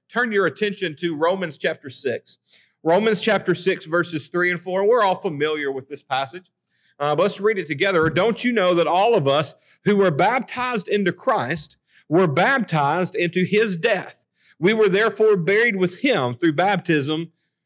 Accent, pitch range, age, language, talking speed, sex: American, 160-210 Hz, 40-59, English, 170 wpm, male